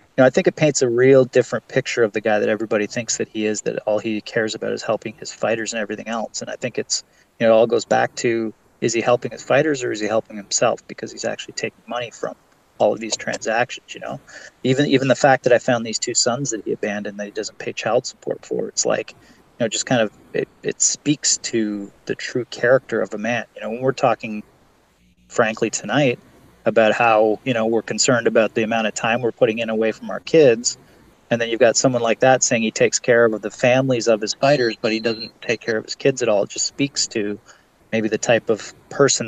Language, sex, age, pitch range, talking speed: English, male, 30-49, 110-120 Hz, 245 wpm